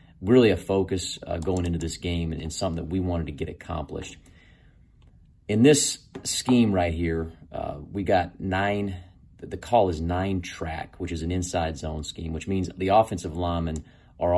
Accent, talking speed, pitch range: American, 180 wpm, 85-95 Hz